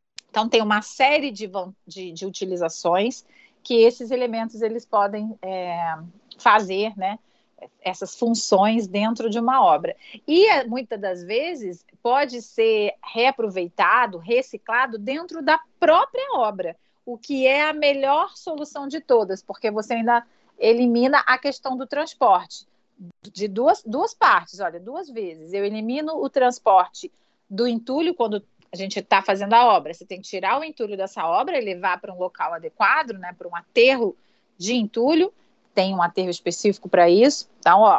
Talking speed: 155 wpm